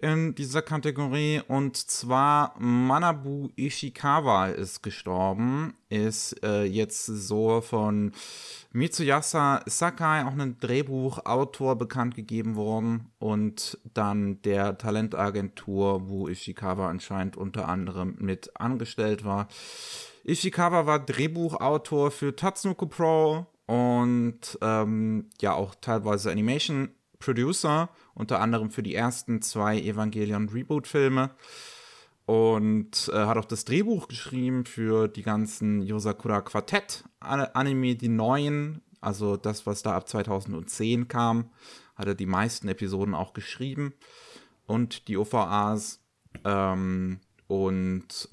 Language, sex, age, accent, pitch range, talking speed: German, male, 30-49, German, 100-140 Hz, 110 wpm